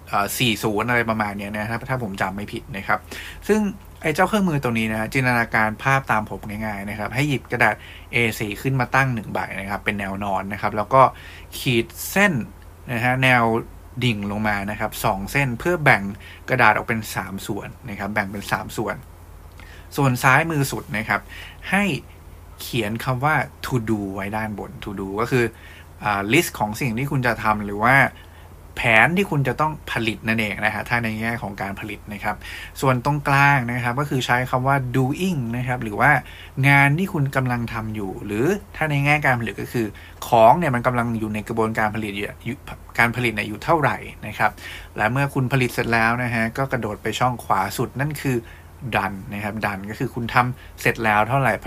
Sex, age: male, 20-39